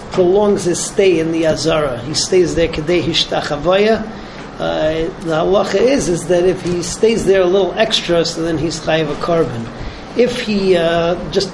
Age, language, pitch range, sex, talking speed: 40-59, English, 160-185 Hz, male, 160 wpm